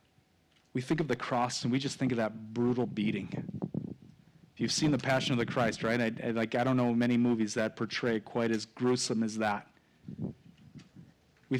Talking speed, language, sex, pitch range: 185 wpm, English, male, 125-185 Hz